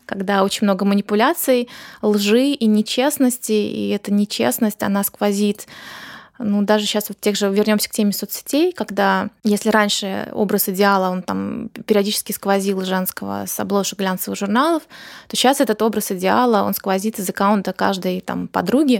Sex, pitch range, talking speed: female, 200-230 Hz, 150 wpm